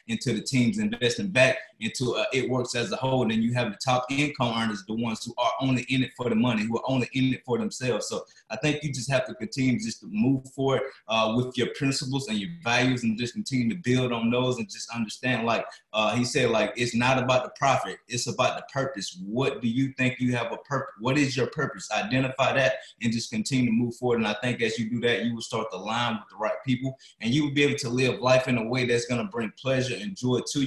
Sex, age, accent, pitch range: male, 20-39, American, 115-130 Hz